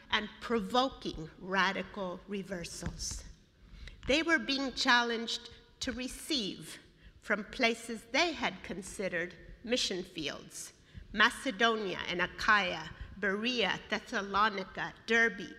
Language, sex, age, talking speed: English, female, 50-69, 90 wpm